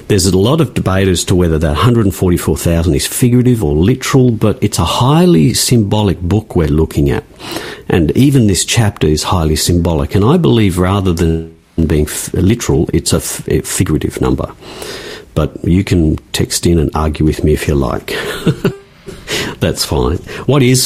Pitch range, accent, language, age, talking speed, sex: 85-115 Hz, Australian, English, 50-69, 165 wpm, male